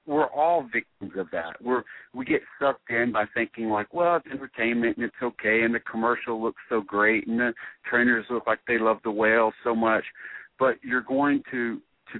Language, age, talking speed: English, 50-69, 200 wpm